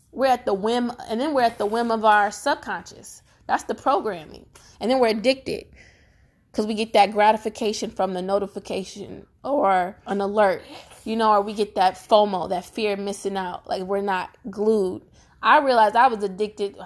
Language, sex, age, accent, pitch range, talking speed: English, female, 20-39, American, 205-255 Hz, 185 wpm